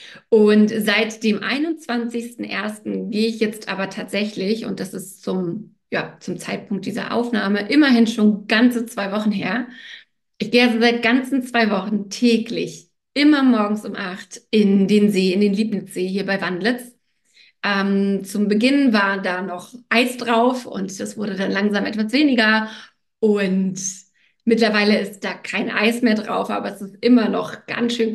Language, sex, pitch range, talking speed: German, female, 205-240 Hz, 160 wpm